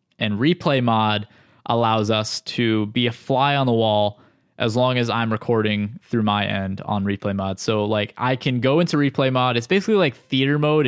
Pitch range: 120-150 Hz